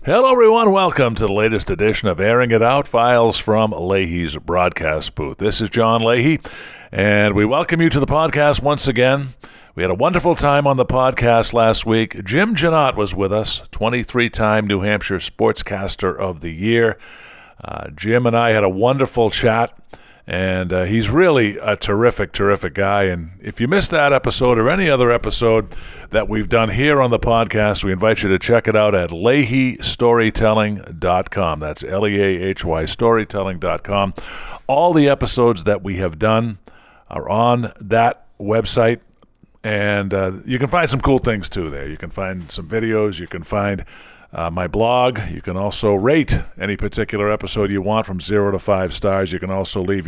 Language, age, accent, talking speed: English, 50-69, American, 175 wpm